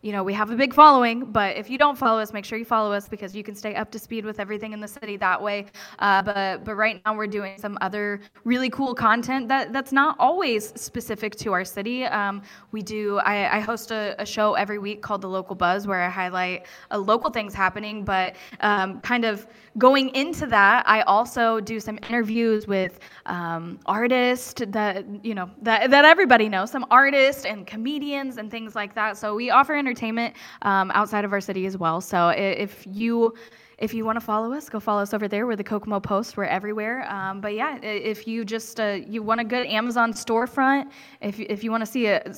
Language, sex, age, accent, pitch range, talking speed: English, female, 10-29, American, 195-230 Hz, 220 wpm